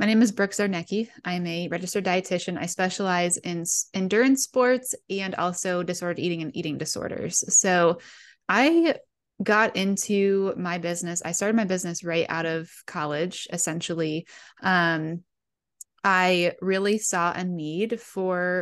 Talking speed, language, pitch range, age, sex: 140 wpm, English, 170-210 Hz, 20-39, female